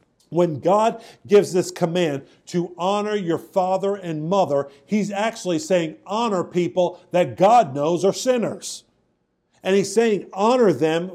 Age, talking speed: 50-69, 140 wpm